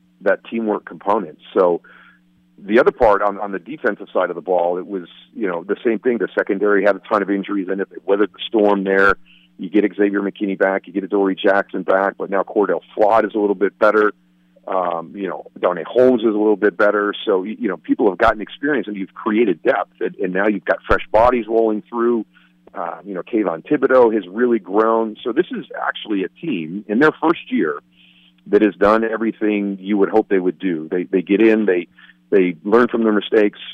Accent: American